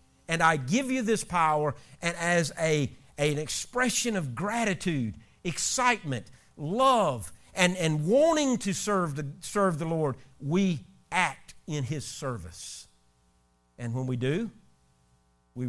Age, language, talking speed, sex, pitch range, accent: 50-69, English, 120 wpm, male, 155-230 Hz, American